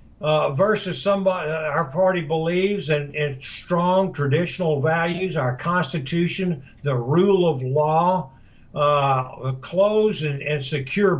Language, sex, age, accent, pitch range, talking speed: English, male, 60-79, American, 145-185 Hz, 125 wpm